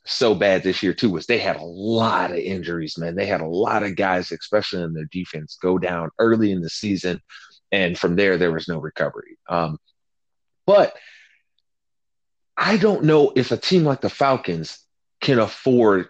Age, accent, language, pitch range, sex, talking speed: 30-49, American, English, 90-145 Hz, male, 185 wpm